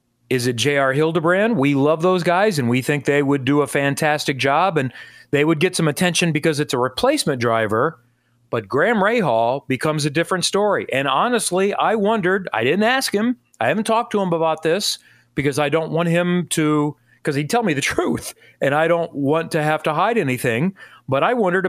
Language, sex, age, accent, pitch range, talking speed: English, male, 40-59, American, 130-175 Hz, 205 wpm